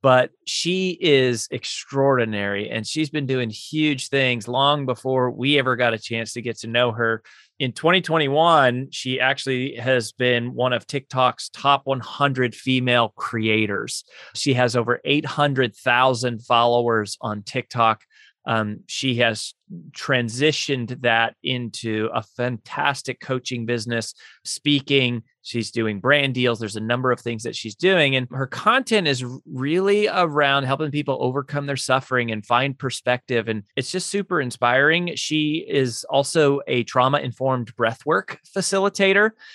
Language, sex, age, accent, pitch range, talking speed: English, male, 30-49, American, 120-145 Hz, 140 wpm